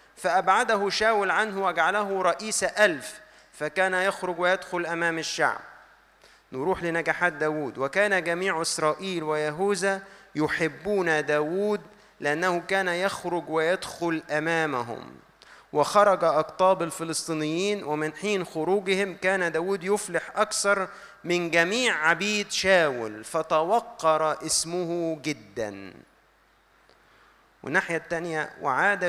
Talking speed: 95 wpm